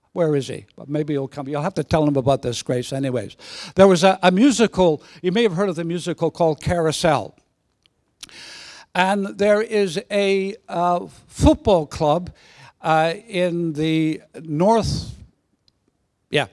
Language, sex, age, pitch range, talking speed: English, male, 60-79, 170-230 Hz, 160 wpm